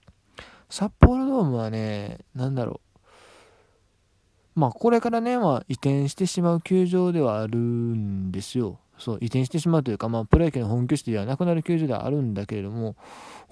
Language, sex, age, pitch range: Japanese, male, 20-39, 110-170 Hz